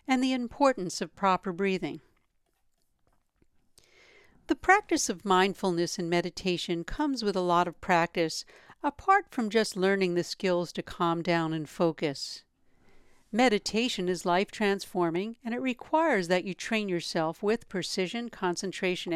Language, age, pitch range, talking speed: English, 60-79, 175-230 Hz, 135 wpm